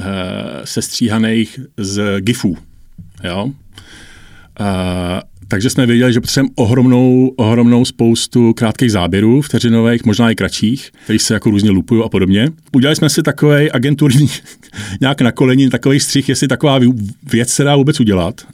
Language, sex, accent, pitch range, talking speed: Czech, male, native, 100-125 Hz, 135 wpm